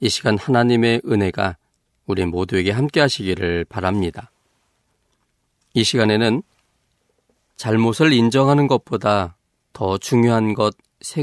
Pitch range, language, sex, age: 95-120 Hz, Korean, male, 40-59